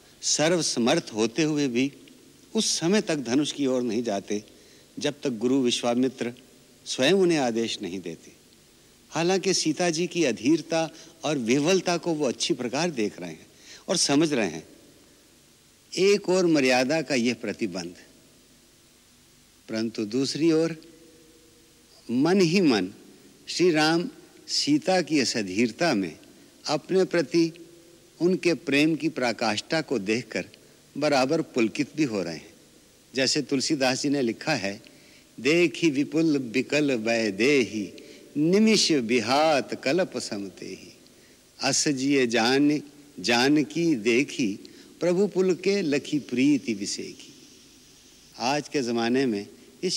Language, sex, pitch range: Hindi, male, 120-165 Hz